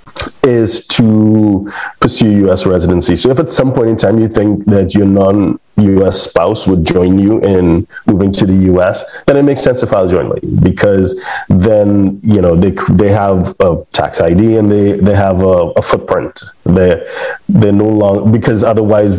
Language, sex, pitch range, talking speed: English, male, 95-110 Hz, 175 wpm